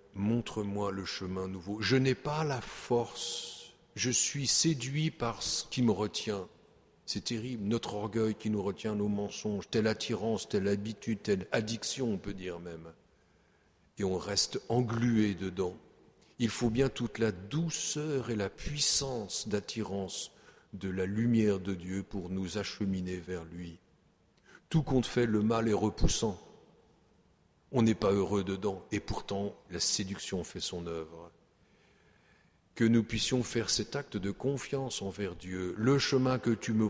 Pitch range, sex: 100-120 Hz, male